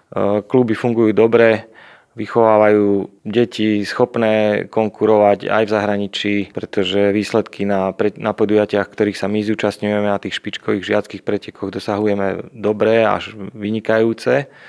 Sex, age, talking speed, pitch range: male, 30-49, 110 wpm, 105-115 Hz